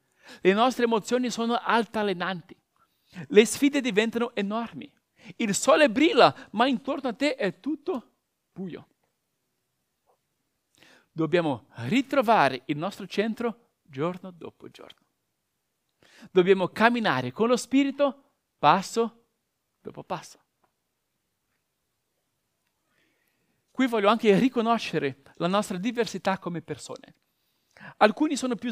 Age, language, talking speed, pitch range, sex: 50-69, Italian, 100 wpm, 185-240 Hz, male